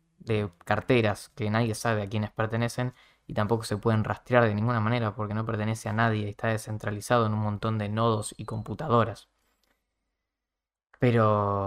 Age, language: 20-39, Spanish